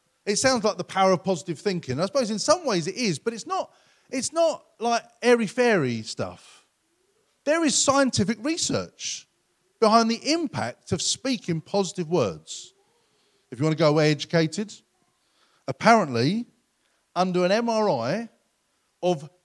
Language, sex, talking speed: English, male, 140 wpm